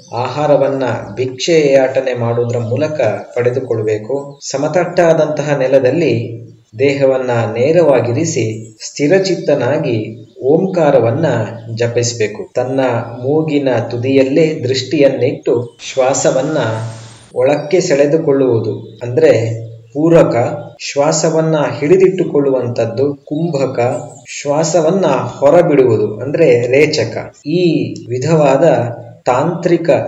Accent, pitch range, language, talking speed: native, 120-155 Hz, Kannada, 60 wpm